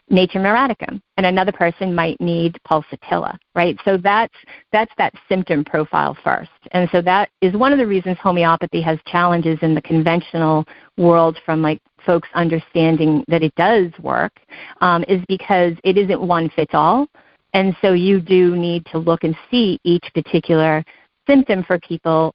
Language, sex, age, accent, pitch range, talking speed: English, female, 40-59, American, 165-195 Hz, 165 wpm